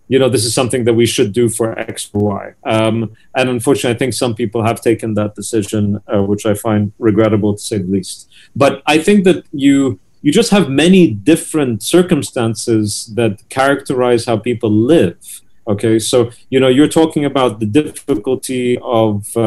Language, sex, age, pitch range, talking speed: English, male, 30-49, 110-130 Hz, 180 wpm